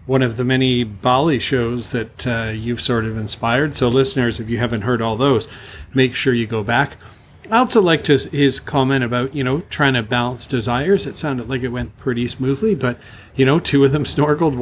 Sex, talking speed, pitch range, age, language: male, 215 wpm, 120-145 Hz, 40-59, English